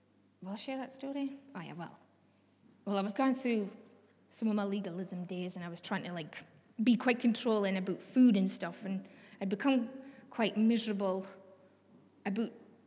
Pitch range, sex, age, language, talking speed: 190-240 Hz, female, 20-39, English, 175 wpm